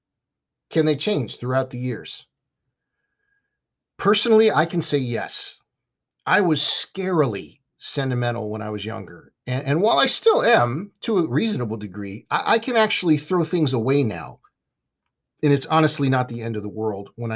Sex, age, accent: male, 50-69, American